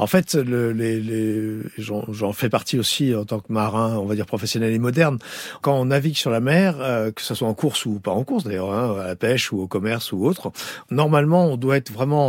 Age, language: 50-69, French